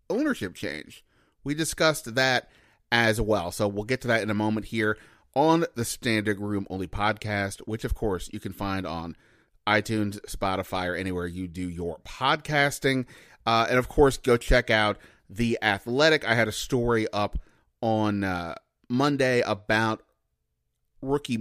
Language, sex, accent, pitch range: English, male, American, 105-130 Hz